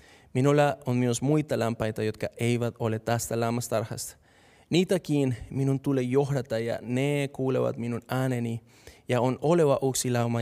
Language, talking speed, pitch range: Finnish, 140 wpm, 120-160 Hz